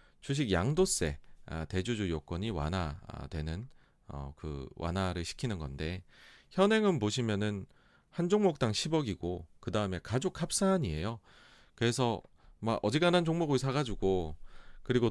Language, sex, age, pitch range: Korean, male, 40-59, 90-130 Hz